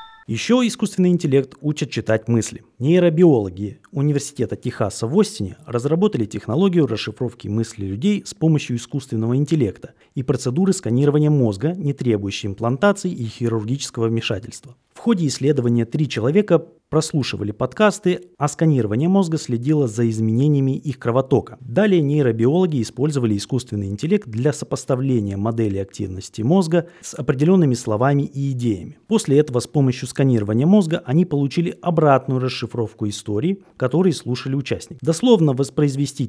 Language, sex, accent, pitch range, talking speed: Russian, male, native, 115-165 Hz, 125 wpm